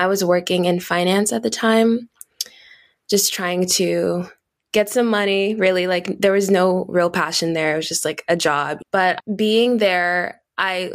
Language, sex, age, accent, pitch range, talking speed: English, female, 20-39, American, 170-195 Hz, 175 wpm